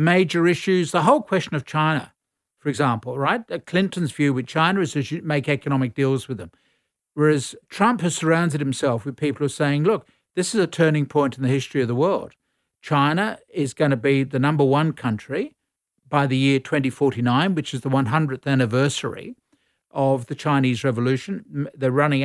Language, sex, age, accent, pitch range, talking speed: English, male, 50-69, Australian, 135-170 Hz, 180 wpm